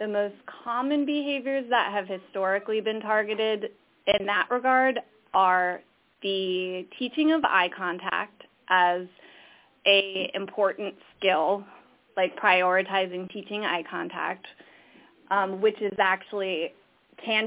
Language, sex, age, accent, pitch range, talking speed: English, female, 20-39, American, 190-230 Hz, 110 wpm